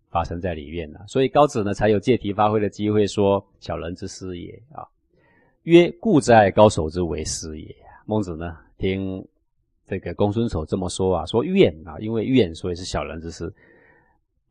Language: Chinese